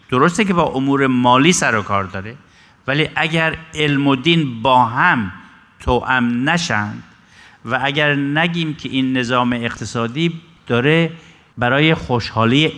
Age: 50-69